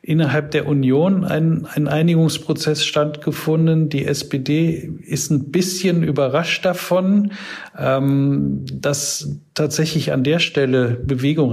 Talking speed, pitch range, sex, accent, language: 110 wpm, 135-160 Hz, male, German, German